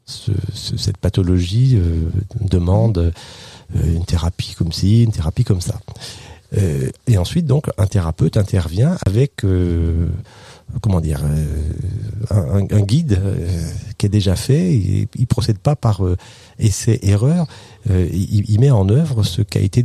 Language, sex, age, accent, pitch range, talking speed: French, male, 40-59, French, 90-120 Hz, 155 wpm